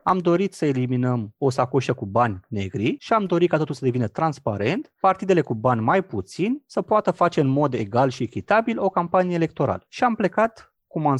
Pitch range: 120-190 Hz